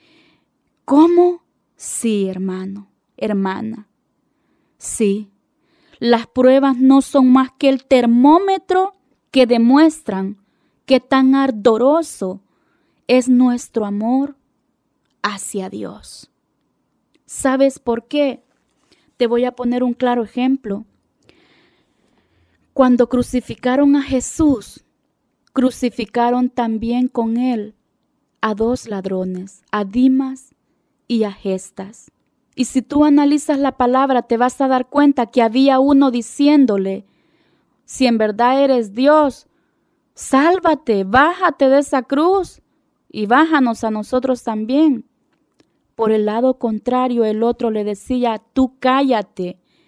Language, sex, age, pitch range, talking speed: Spanish, female, 20-39, 225-275 Hz, 110 wpm